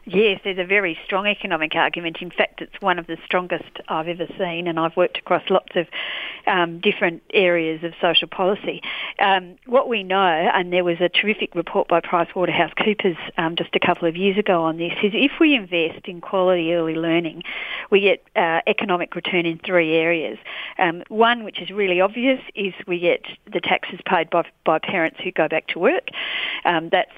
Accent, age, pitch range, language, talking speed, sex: Australian, 50-69, 170-205 Hz, English, 195 wpm, female